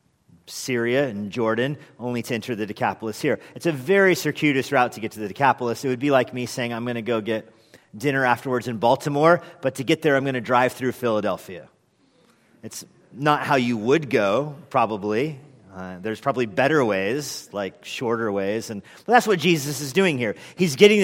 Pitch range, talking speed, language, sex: 120-160 Hz, 190 wpm, English, male